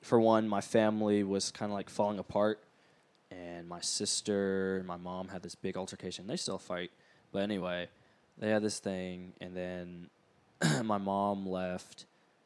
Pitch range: 90-105 Hz